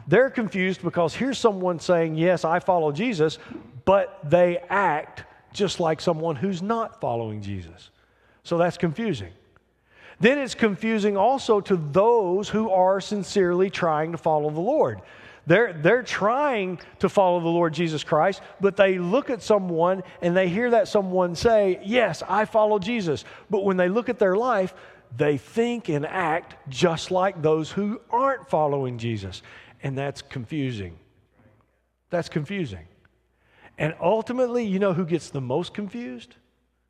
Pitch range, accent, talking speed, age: 130-200 Hz, American, 150 wpm, 40-59